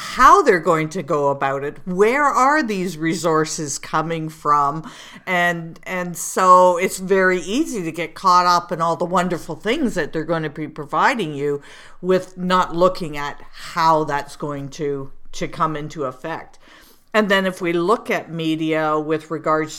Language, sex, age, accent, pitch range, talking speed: English, female, 50-69, American, 150-180 Hz, 170 wpm